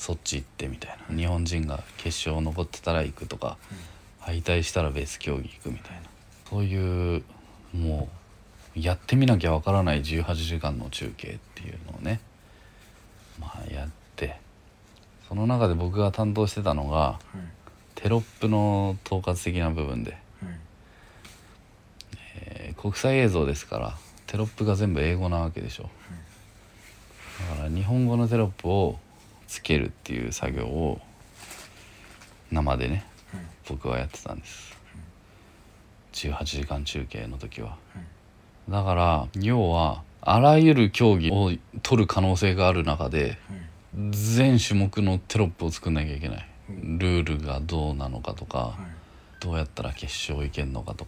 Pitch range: 80-105 Hz